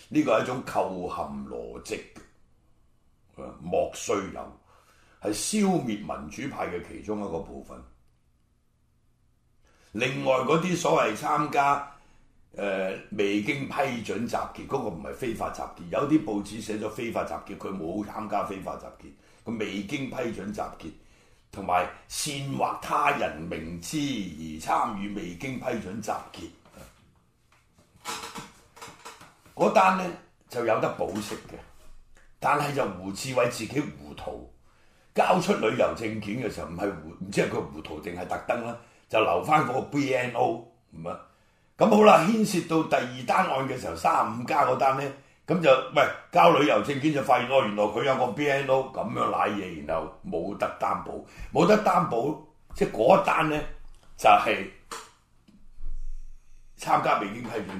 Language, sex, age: Chinese, male, 60-79